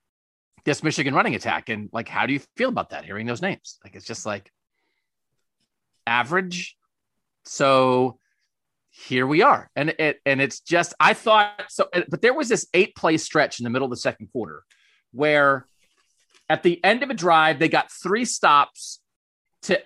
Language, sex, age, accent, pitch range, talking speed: English, male, 30-49, American, 140-195 Hz, 175 wpm